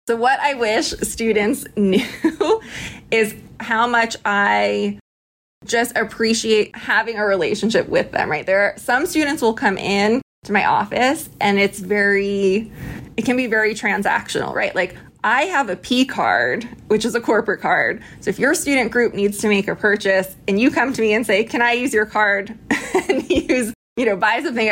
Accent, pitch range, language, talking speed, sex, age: American, 200-255 Hz, English, 185 wpm, female, 20-39